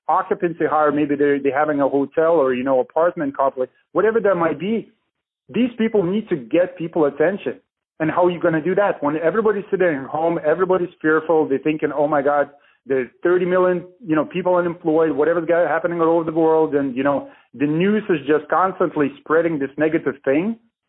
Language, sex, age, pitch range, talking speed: English, male, 30-49, 150-185 Hz, 200 wpm